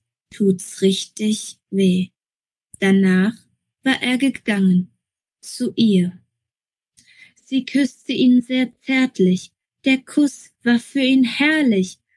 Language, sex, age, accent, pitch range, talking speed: German, female, 20-39, German, 195-255 Hz, 100 wpm